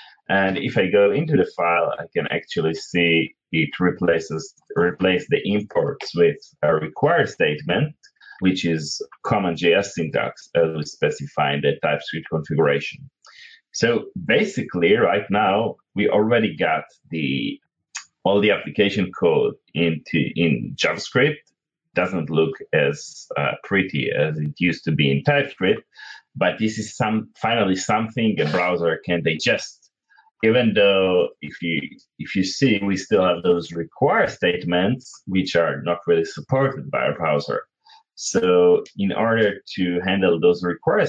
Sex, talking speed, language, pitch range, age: male, 140 wpm, English, 85-120 Hz, 30-49